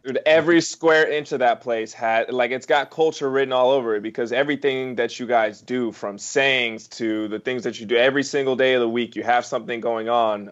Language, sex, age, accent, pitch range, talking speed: English, male, 20-39, American, 110-135 Hz, 235 wpm